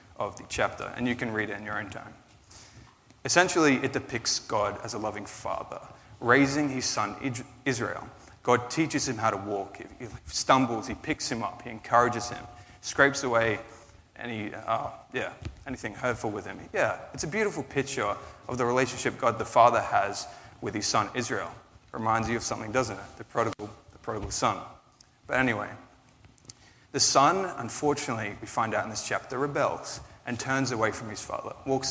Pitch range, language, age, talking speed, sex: 110-130 Hz, English, 20-39, 180 wpm, male